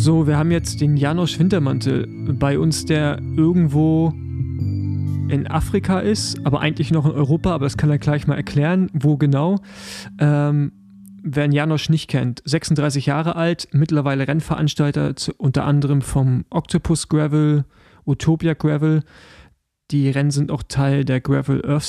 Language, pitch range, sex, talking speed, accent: German, 135-160 Hz, male, 150 wpm, German